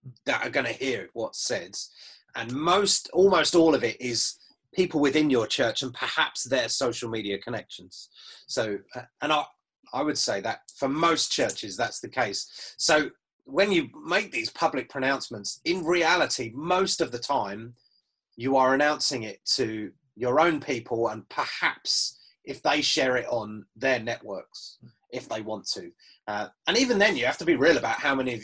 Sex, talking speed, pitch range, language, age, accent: male, 175 wpm, 115-155 Hz, English, 30-49, British